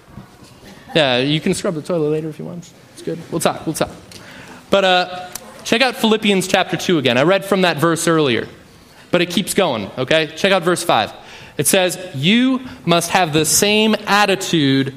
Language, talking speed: English, 190 wpm